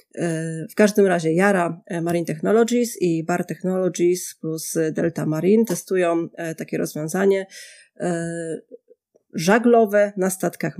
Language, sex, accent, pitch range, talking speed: Polish, female, native, 170-200 Hz, 100 wpm